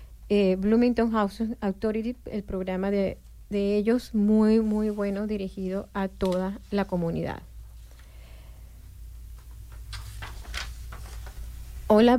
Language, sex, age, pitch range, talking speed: Spanish, female, 30-49, 190-240 Hz, 90 wpm